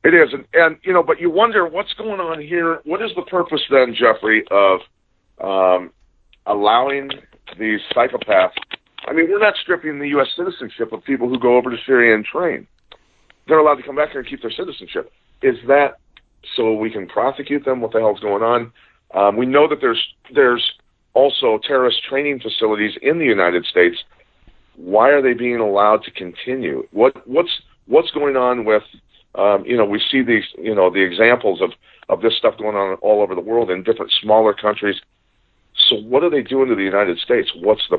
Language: English